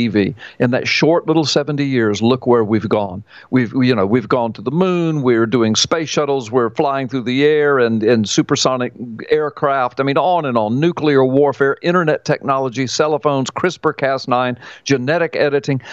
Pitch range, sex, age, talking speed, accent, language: 135-175 Hz, male, 50-69, 175 wpm, American, English